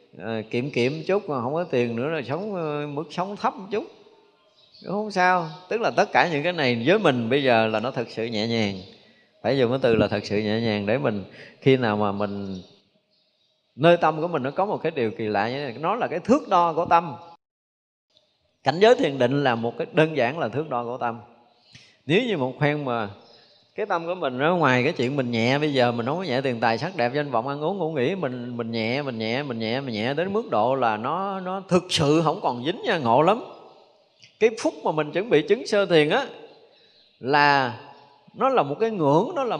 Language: Vietnamese